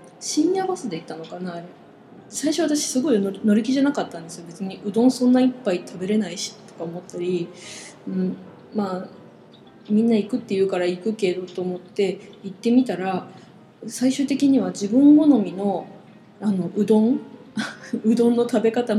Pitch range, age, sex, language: 185-235 Hz, 20-39, female, Japanese